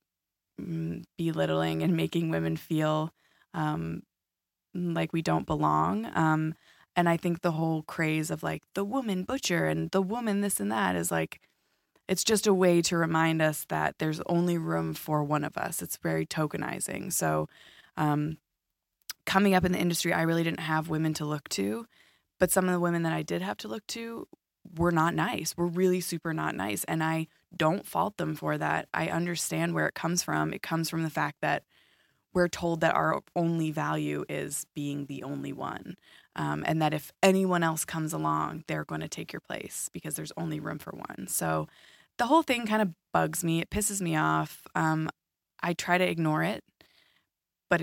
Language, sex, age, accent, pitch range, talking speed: English, female, 20-39, American, 120-175 Hz, 190 wpm